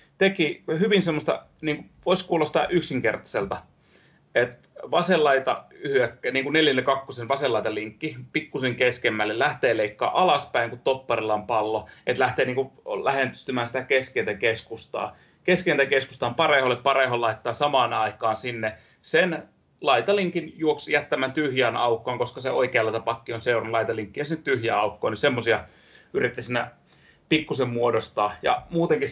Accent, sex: native, male